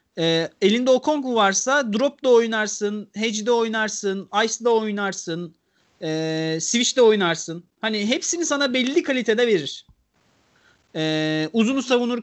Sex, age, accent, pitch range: male, 40-59, native, 195-270 Hz